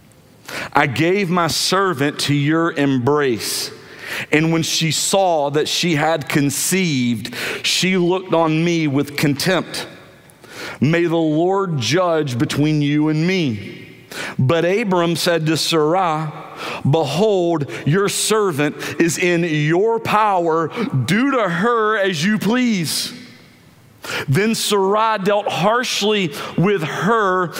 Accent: American